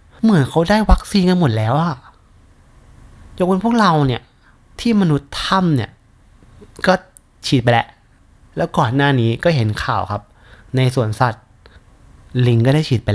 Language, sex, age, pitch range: Thai, male, 30-49, 110-135 Hz